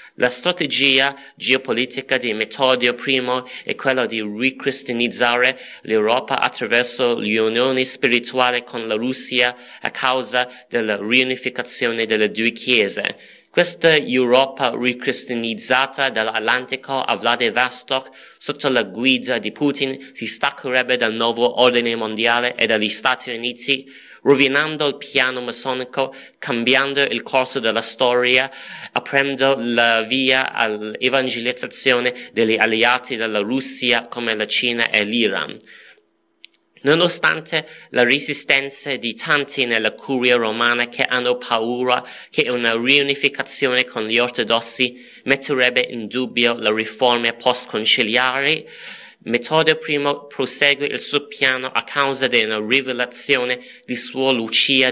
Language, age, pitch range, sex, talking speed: Italian, 30-49, 120-135 Hz, male, 115 wpm